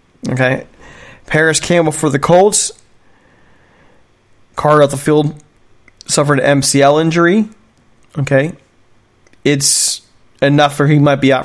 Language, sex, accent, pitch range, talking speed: English, male, American, 125-155 Hz, 115 wpm